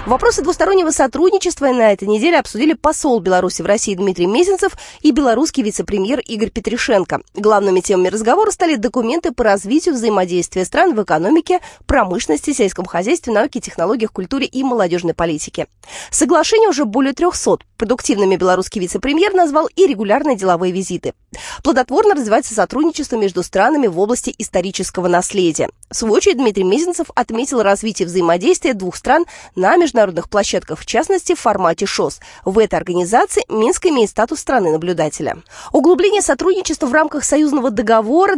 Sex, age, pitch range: female, 20-39, 205-320 Hz